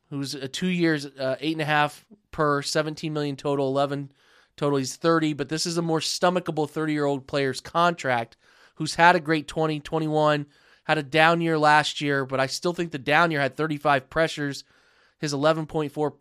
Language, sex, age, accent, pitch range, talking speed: English, male, 20-39, American, 130-155 Hz, 195 wpm